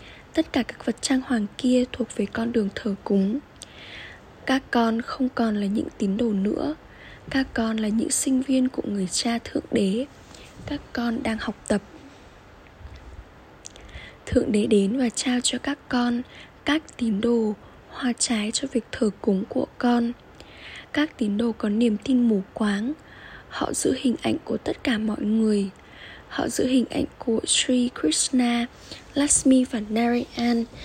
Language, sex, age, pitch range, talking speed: Vietnamese, female, 10-29, 210-260 Hz, 165 wpm